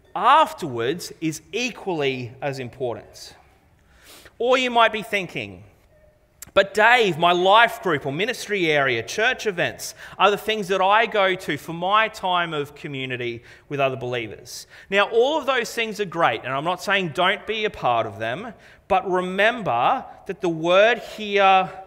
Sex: male